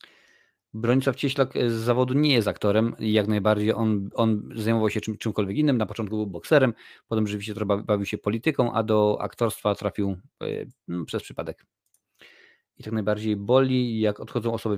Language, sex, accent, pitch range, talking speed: Polish, male, native, 100-110 Hz, 165 wpm